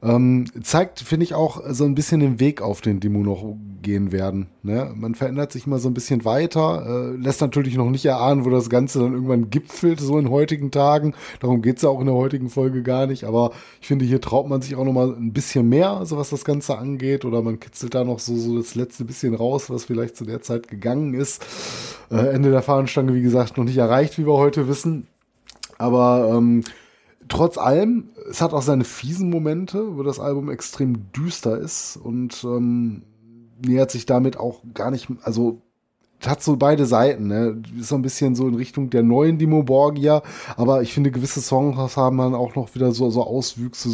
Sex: male